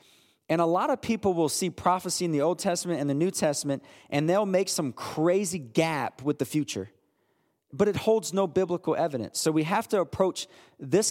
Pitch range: 130-175 Hz